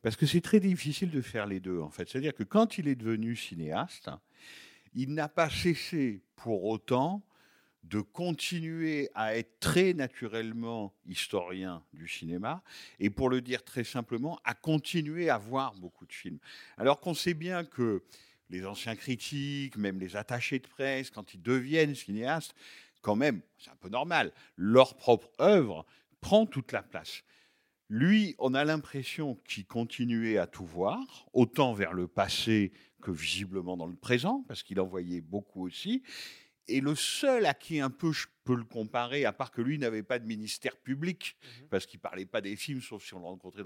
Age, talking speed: 50-69, 180 wpm